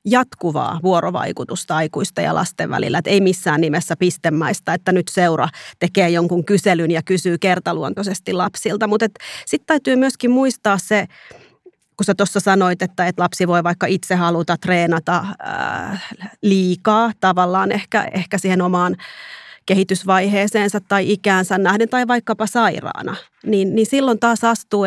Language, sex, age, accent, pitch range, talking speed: Finnish, female, 30-49, native, 175-205 Hz, 140 wpm